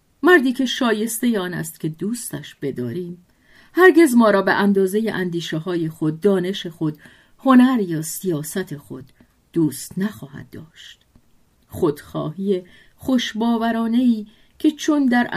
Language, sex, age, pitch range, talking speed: Persian, female, 50-69, 165-245 Hz, 115 wpm